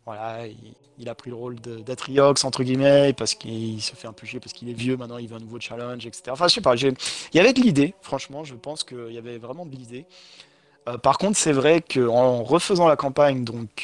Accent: French